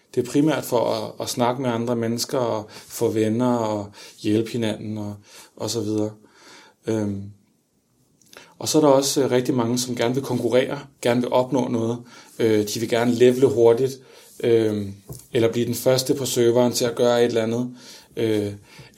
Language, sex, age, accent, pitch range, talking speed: Danish, male, 30-49, native, 115-135 Hz, 175 wpm